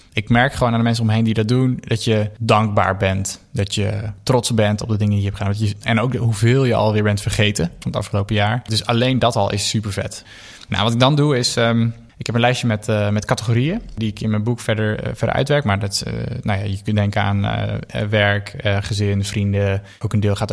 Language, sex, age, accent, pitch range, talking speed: Dutch, male, 20-39, Dutch, 105-125 Hz, 260 wpm